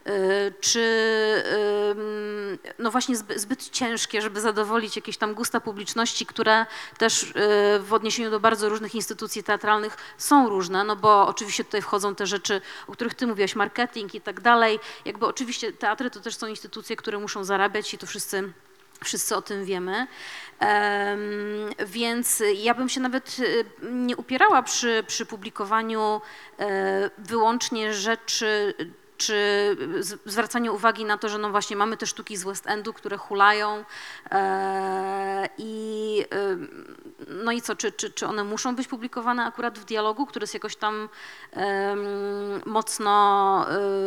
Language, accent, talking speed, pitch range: Polish, native, 140 wpm, 205-235 Hz